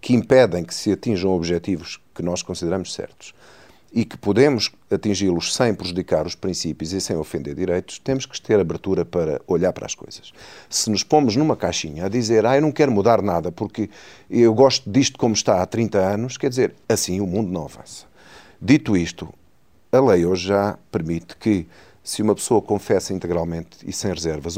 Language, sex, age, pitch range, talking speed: Portuguese, male, 40-59, 90-110 Hz, 185 wpm